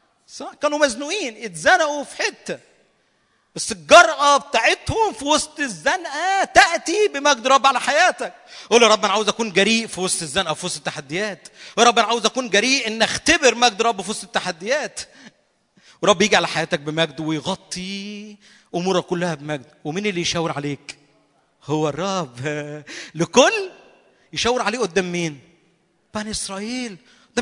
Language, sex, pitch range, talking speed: Arabic, male, 180-280 Hz, 140 wpm